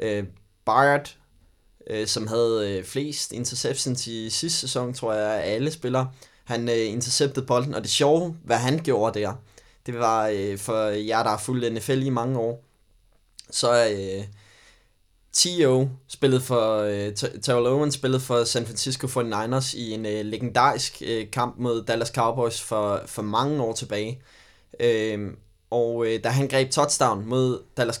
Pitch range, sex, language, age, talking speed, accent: 110-130 Hz, male, Danish, 20-39, 145 wpm, native